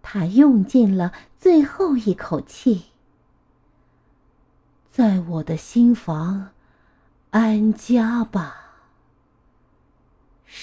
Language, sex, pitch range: Chinese, female, 170-265 Hz